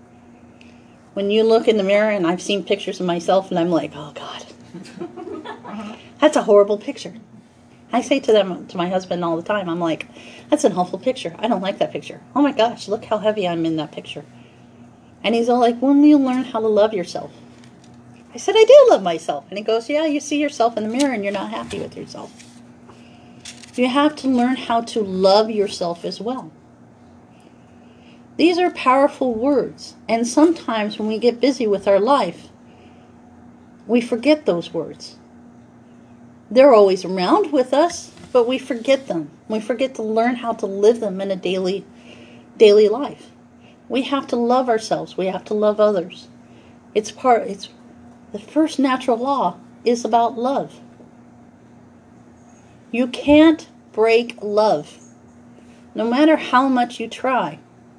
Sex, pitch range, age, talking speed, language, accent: female, 200-260 Hz, 40-59, 170 wpm, English, American